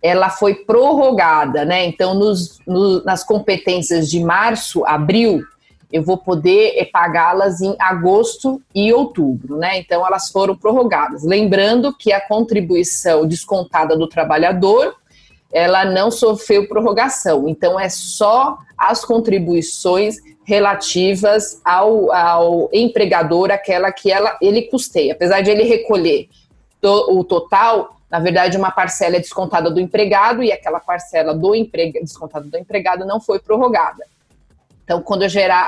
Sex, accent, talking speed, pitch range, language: female, Brazilian, 130 wpm, 175-215 Hz, Portuguese